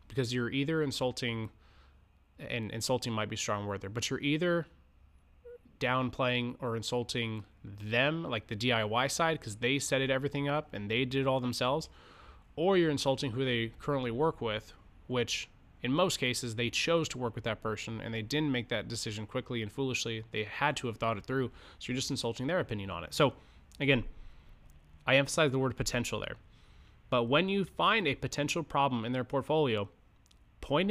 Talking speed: 185 wpm